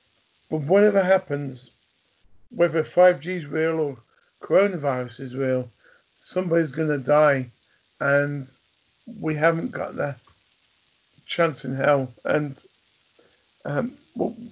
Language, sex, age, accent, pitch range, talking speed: English, male, 50-69, British, 150-185 Hz, 105 wpm